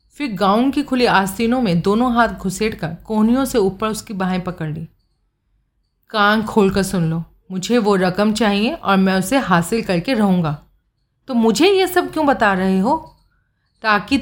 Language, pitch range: Hindi, 180-245 Hz